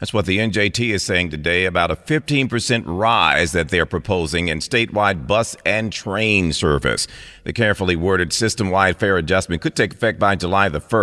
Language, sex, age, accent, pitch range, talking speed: English, male, 50-69, American, 80-110 Hz, 175 wpm